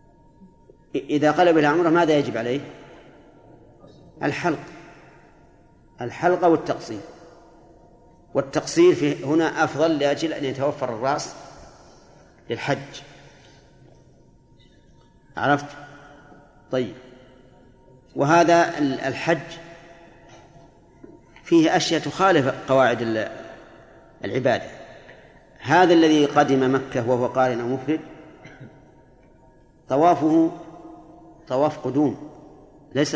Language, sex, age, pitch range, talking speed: Arabic, male, 40-59, 135-165 Hz, 70 wpm